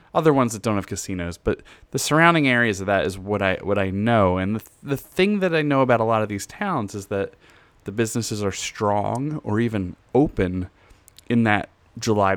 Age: 30-49